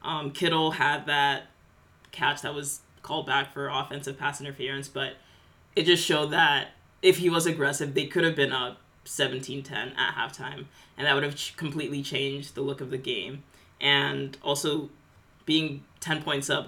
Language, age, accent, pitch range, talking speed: English, 20-39, American, 135-155 Hz, 170 wpm